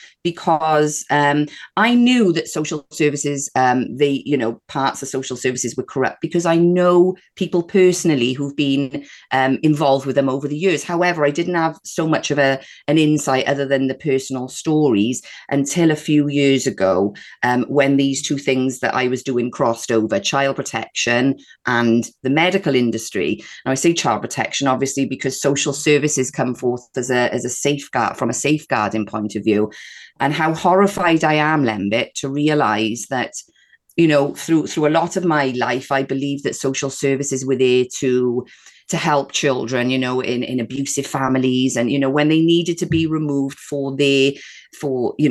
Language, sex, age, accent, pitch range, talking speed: English, female, 30-49, British, 130-165 Hz, 185 wpm